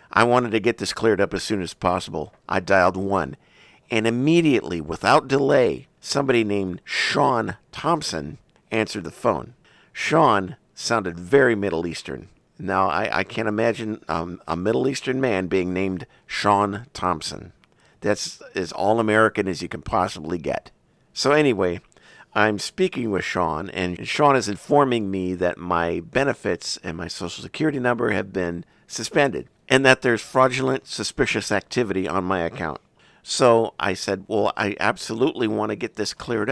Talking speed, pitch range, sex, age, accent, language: 155 wpm, 95-140 Hz, male, 50-69, American, English